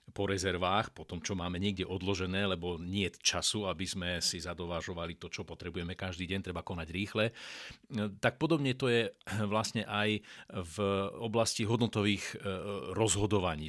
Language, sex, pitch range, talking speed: Slovak, male, 85-105 Hz, 150 wpm